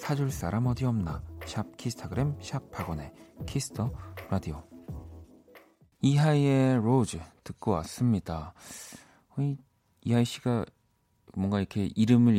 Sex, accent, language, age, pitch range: male, native, Korean, 40-59, 90-125 Hz